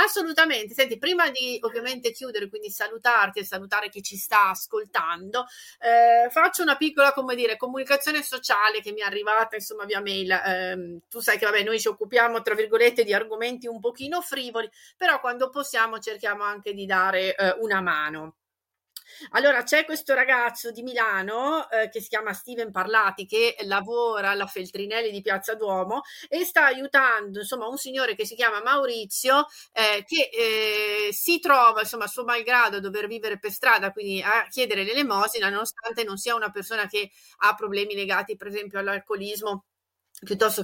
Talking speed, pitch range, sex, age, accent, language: 170 wpm, 205-260 Hz, female, 40-59, native, Italian